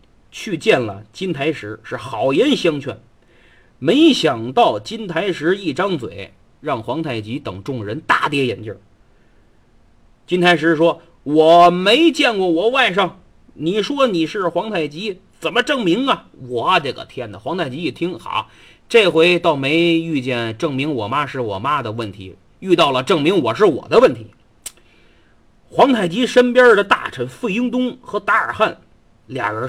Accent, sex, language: native, male, Chinese